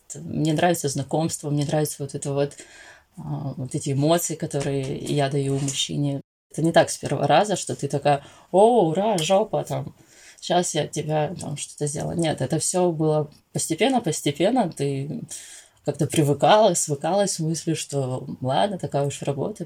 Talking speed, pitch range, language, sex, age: 150 wpm, 145-180 Hz, Russian, female, 20-39